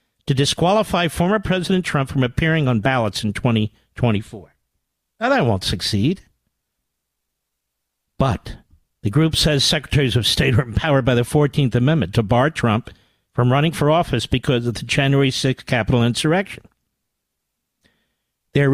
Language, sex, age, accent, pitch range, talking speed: English, male, 50-69, American, 115-160 Hz, 140 wpm